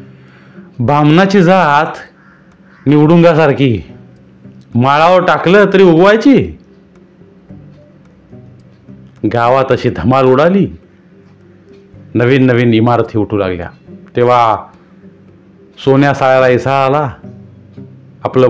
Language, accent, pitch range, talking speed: Marathi, native, 110-160 Hz, 70 wpm